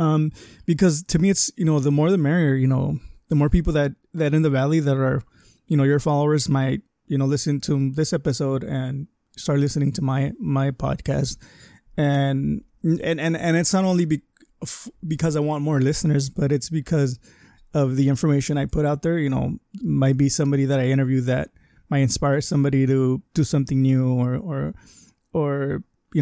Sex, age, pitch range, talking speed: male, 20-39, 135-155 Hz, 190 wpm